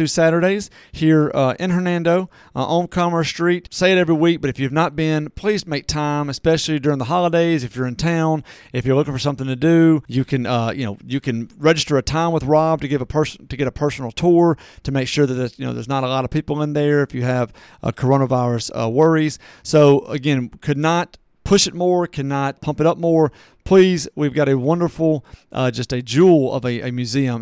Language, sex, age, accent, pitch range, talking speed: English, male, 40-59, American, 130-165 Hz, 225 wpm